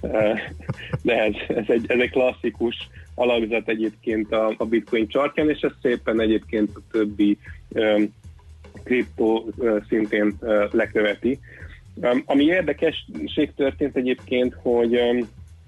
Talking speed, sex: 125 wpm, male